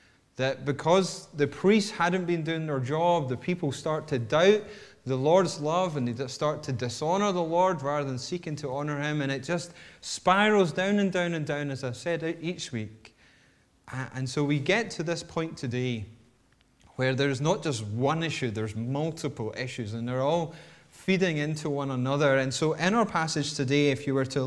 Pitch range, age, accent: 130-170 Hz, 30-49, British